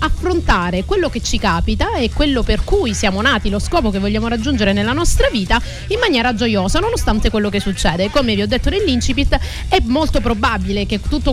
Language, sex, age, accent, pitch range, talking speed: Italian, female, 30-49, native, 200-265 Hz, 190 wpm